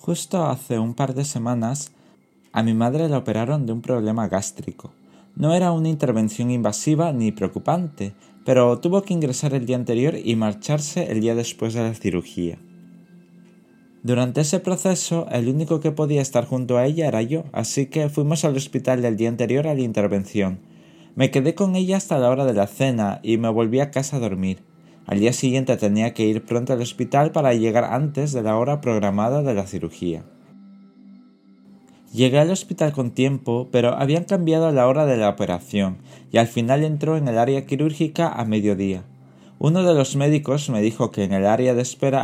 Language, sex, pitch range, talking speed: Spanish, male, 110-150 Hz, 190 wpm